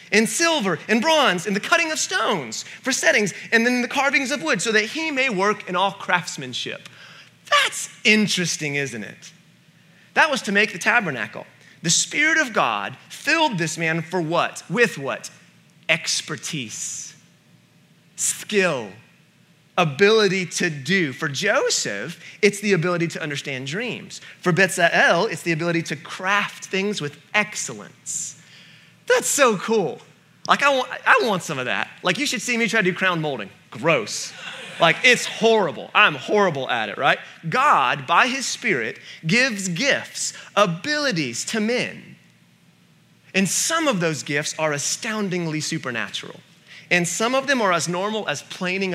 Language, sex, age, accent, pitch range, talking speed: English, male, 30-49, American, 165-220 Hz, 155 wpm